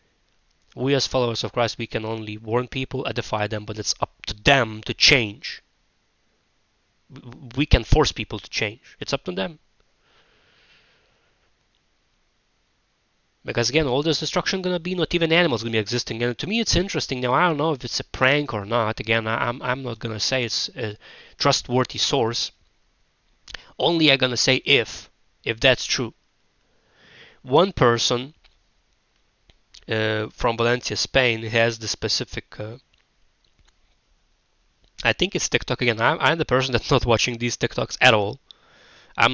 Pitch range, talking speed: 110-130 Hz, 165 wpm